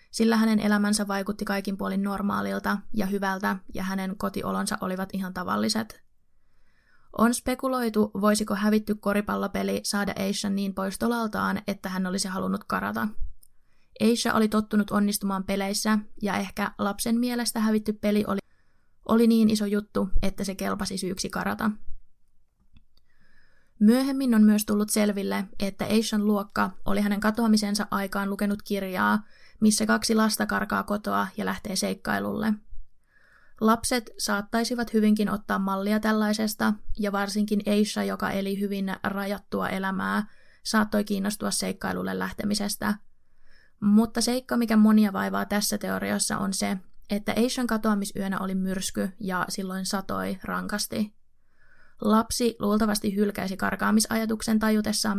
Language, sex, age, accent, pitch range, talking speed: Finnish, female, 20-39, native, 190-215 Hz, 120 wpm